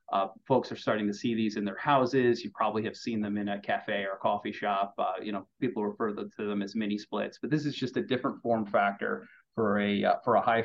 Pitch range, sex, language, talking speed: 110-140 Hz, male, English, 240 wpm